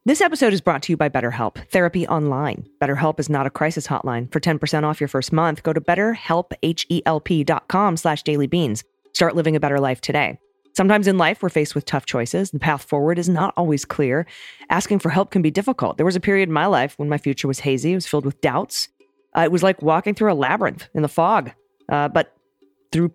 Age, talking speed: 30-49, 220 wpm